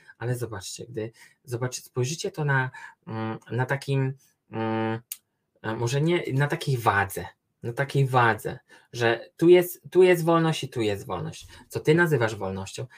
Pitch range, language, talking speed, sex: 115-150 Hz, Polish, 135 wpm, male